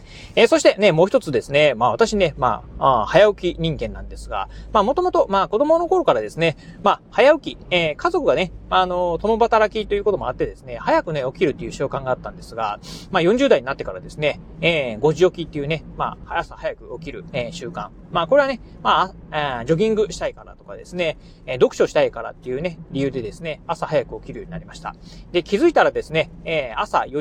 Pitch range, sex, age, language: 150-220 Hz, male, 30-49, Japanese